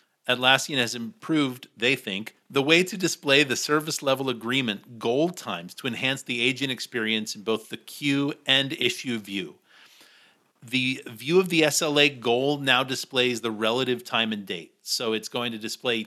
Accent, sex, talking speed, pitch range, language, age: American, male, 170 wpm, 115-145 Hz, English, 40-59